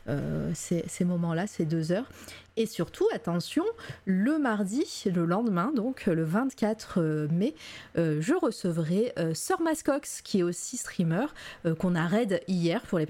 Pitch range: 165-230 Hz